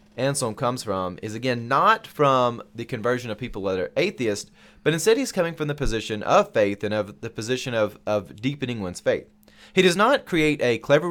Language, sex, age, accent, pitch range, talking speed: English, male, 30-49, American, 110-150 Hz, 205 wpm